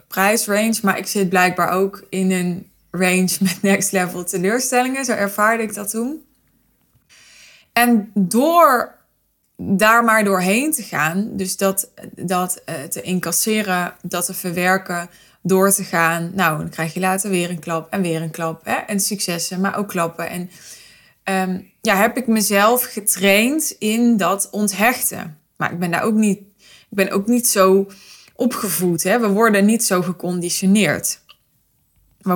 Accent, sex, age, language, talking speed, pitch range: Dutch, female, 20-39, Dutch, 155 wpm, 180-205 Hz